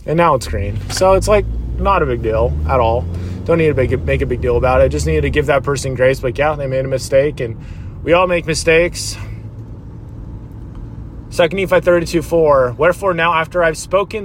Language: English